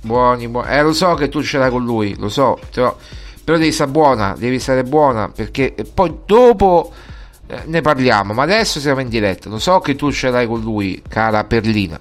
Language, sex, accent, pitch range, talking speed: Italian, male, native, 110-150 Hz, 210 wpm